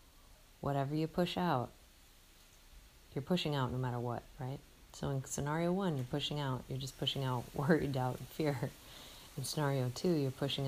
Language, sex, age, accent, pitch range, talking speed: English, female, 30-49, American, 125-145 Hz, 175 wpm